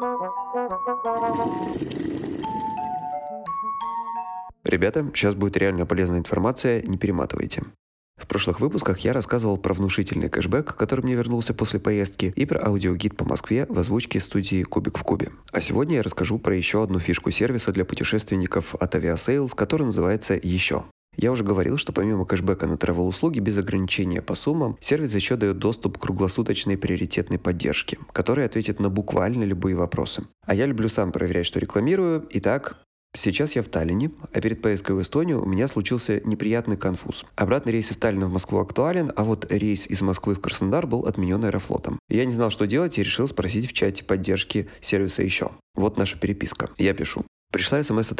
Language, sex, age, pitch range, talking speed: Russian, male, 20-39, 95-120 Hz, 165 wpm